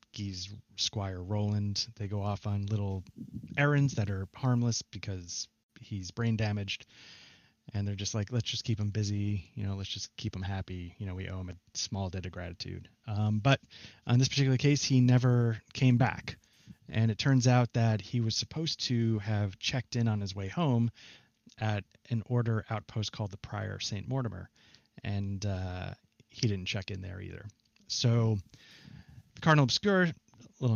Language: English